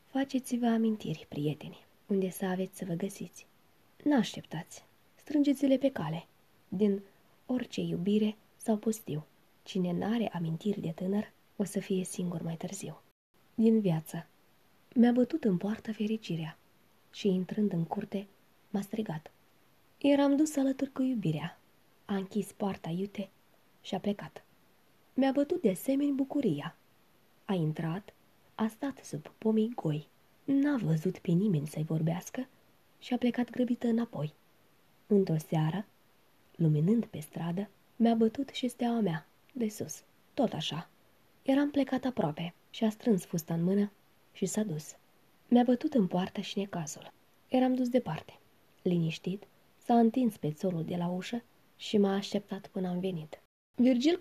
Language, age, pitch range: Romanian, 20-39, 175-235 Hz